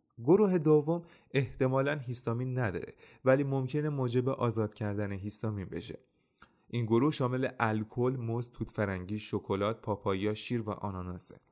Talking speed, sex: 125 wpm, male